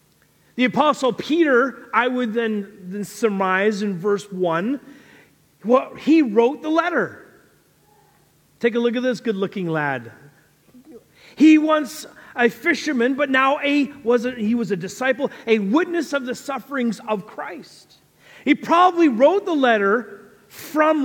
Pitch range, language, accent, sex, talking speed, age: 195-270 Hz, English, American, male, 140 wpm, 40-59